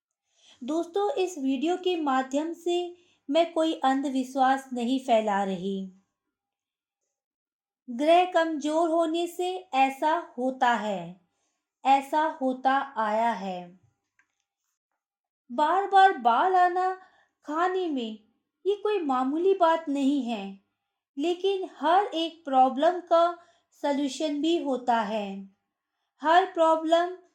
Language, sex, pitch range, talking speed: Hindi, female, 250-335 Hz, 100 wpm